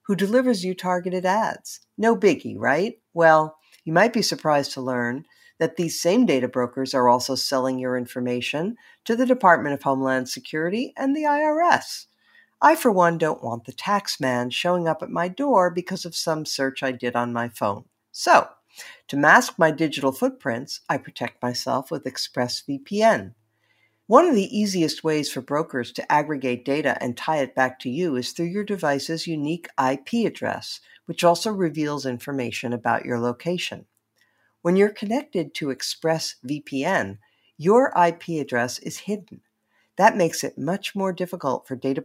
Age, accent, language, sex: 50-69, American, English, female